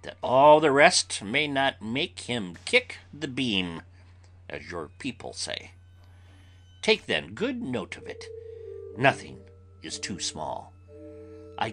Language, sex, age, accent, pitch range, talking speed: English, male, 60-79, American, 90-125 Hz, 135 wpm